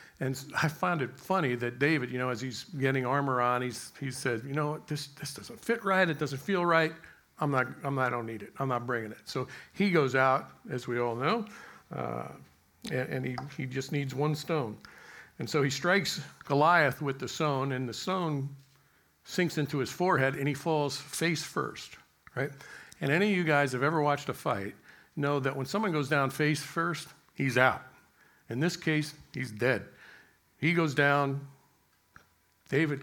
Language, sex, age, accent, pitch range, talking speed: English, male, 50-69, American, 125-155 Hz, 195 wpm